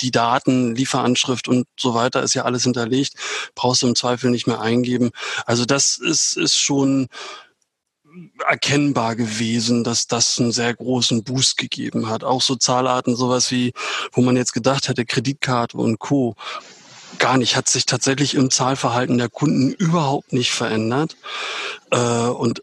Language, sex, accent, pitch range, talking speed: German, male, German, 120-130 Hz, 155 wpm